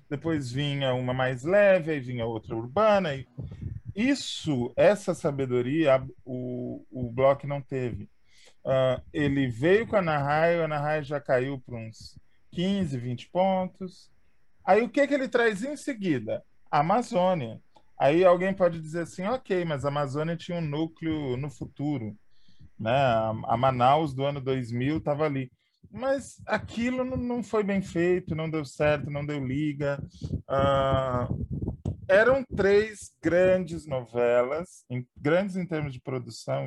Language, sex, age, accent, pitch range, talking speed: Portuguese, male, 20-39, Brazilian, 125-190 Hz, 145 wpm